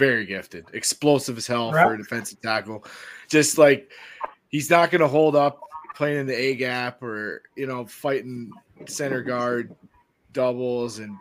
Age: 20-39